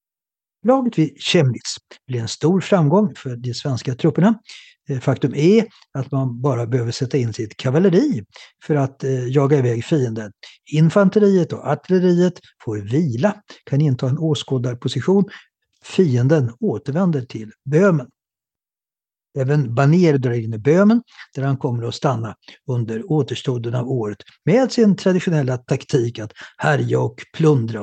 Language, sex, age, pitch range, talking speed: English, male, 60-79, 125-165 Hz, 135 wpm